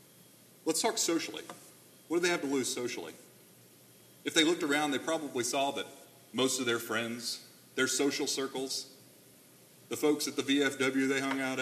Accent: American